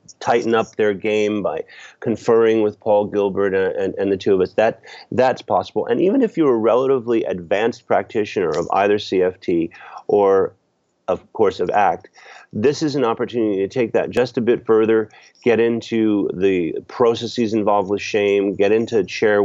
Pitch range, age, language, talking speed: 100-140 Hz, 30-49, English, 175 wpm